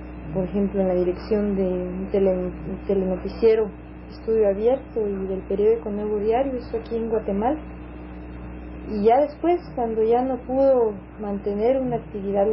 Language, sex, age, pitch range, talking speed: Spanish, female, 30-49, 175-225 Hz, 140 wpm